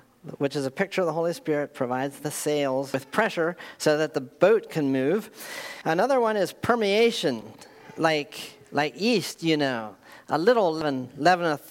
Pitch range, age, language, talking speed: 155-215 Hz, 40-59, English, 165 wpm